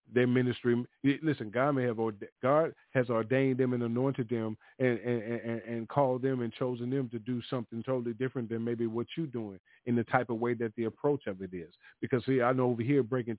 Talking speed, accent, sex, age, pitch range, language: 225 wpm, American, male, 40-59, 120-155 Hz, English